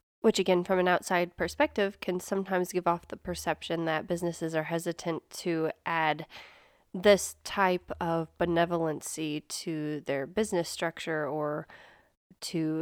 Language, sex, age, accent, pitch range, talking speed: English, female, 20-39, American, 165-195 Hz, 130 wpm